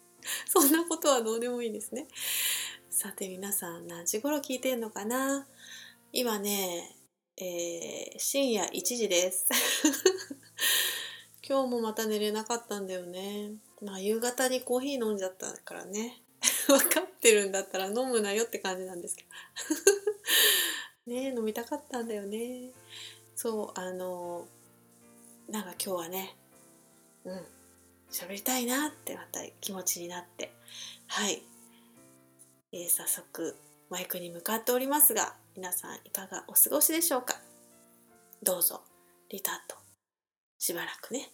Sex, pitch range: female, 180-260 Hz